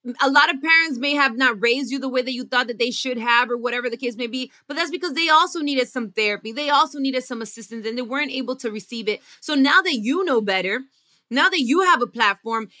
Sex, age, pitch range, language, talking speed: female, 20-39, 235-295 Hz, English, 260 wpm